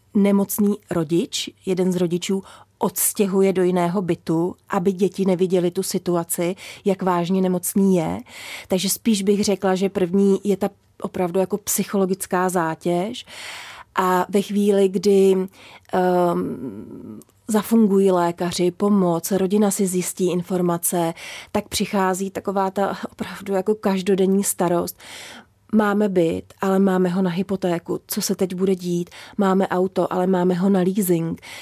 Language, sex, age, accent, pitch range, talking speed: Czech, female, 30-49, native, 180-200 Hz, 130 wpm